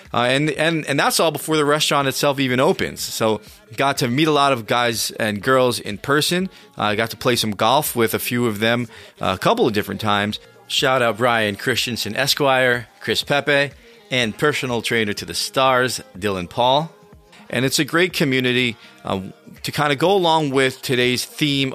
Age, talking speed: 30-49, 195 wpm